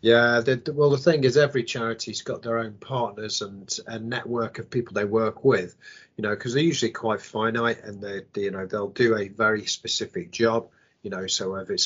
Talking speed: 215 wpm